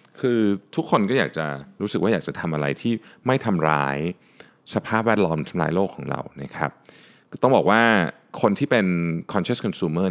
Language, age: Thai, 20-39